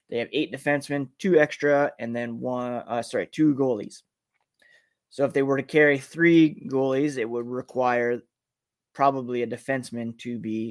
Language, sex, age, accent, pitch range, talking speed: English, male, 20-39, American, 120-145 Hz, 165 wpm